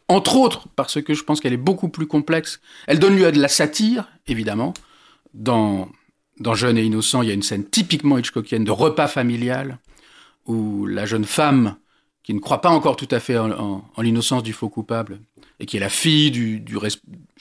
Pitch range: 120-155 Hz